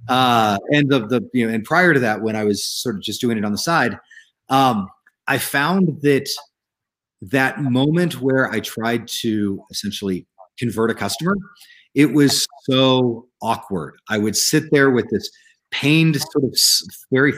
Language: English